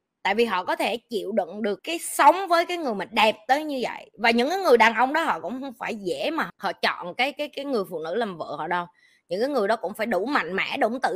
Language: Vietnamese